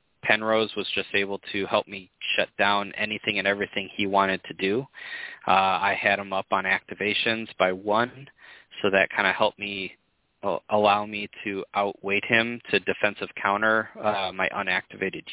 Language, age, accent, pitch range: English, 20-39, American, 95-110 Hz